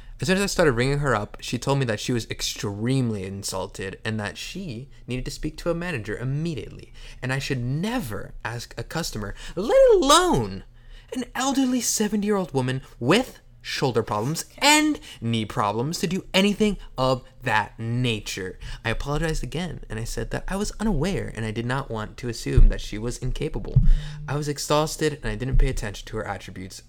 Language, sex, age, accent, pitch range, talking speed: English, male, 20-39, American, 110-145 Hz, 185 wpm